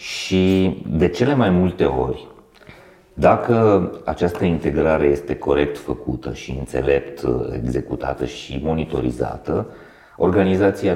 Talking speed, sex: 100 wpm, male